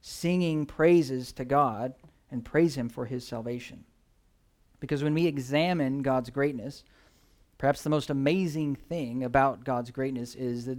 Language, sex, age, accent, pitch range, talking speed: English, male, 40-59, American, 125-150 Hz, 145 wpm